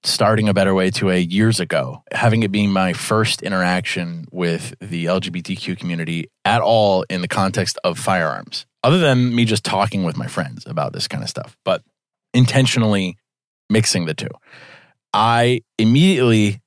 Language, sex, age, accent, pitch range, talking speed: English, male, 30-49, American, 95-120 Hz, 160 wpm